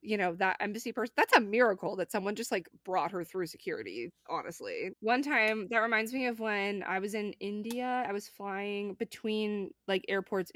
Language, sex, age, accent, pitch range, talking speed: English, female, 20-39, American, 185-230 Hz, 195 wpm